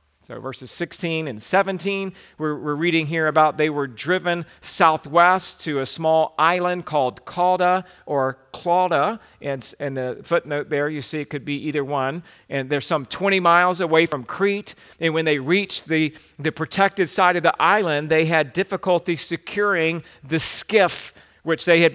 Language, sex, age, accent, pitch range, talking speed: English, male, 40-59, American, 150-180 Hz, 170 wpm